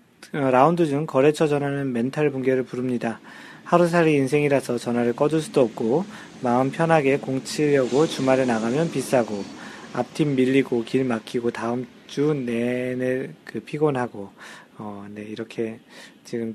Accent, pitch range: native, 120-160 Hz